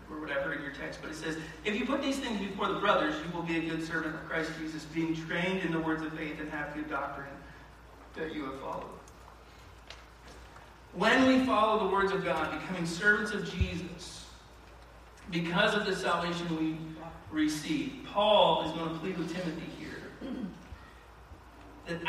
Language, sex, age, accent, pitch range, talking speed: English, male, 40-59, American, 165-220 Hz, 180 wpm